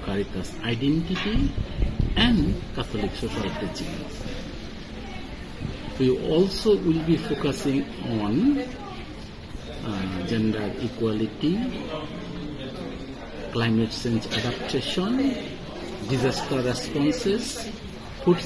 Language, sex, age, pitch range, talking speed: Filipino, male, 50-69, 110-175 Hz, 70 wpm